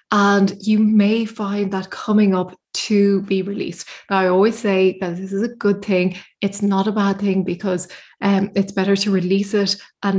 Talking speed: 190 wpm